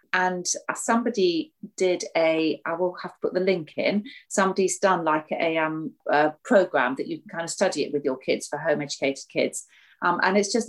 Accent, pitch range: British, 145-190 Hz